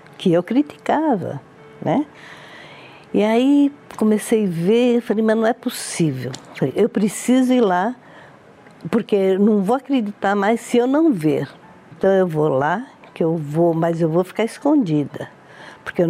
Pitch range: 170-225 Hz